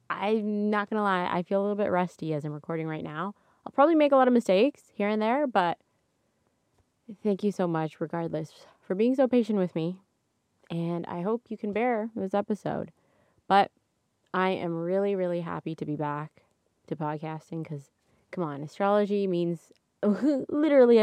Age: 20-39